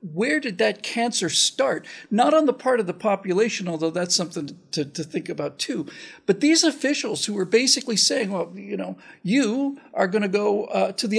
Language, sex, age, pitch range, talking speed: English, male, 50-69, 180-255 Hz, 205 wpm